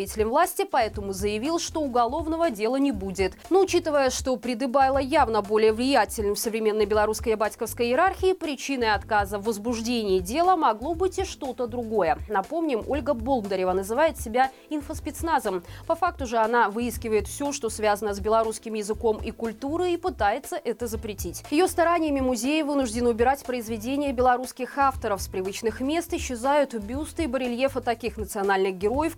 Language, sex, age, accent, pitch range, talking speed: Russian, female, 20-39, native, 215-310 Hz, 145 wpm